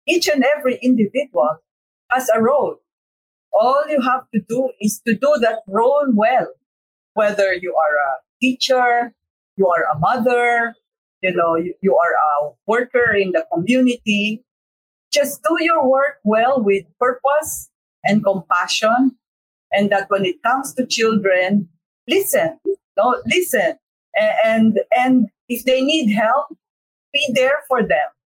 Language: English